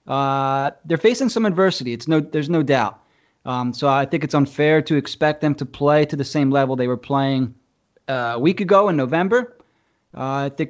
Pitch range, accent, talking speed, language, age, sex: 140-175 Hz, American, 210 wpm, English, 20-39, male